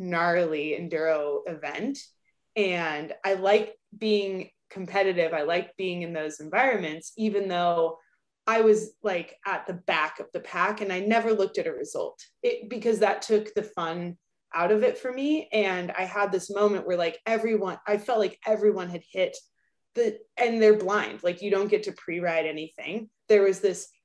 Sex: female